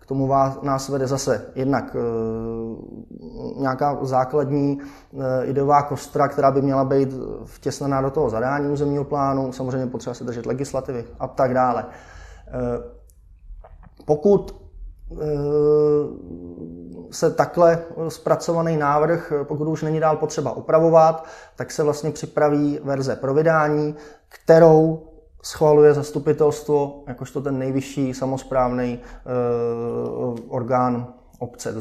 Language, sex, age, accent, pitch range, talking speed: Czech, male, 20-39, native, 125-150 Hz, 105 wpm